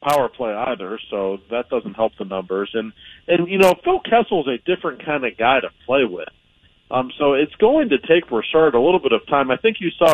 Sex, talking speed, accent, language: male, 230 wpm, American, English